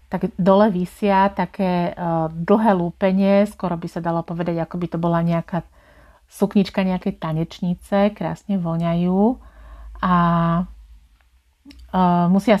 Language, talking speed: Slovak, 120 wpm